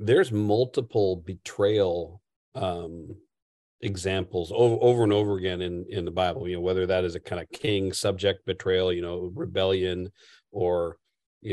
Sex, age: male, 40-59